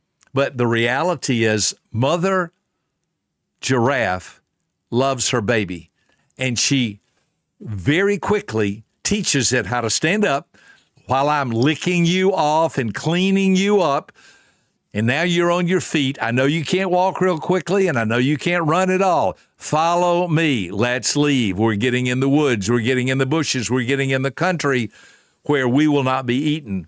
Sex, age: male, 60-79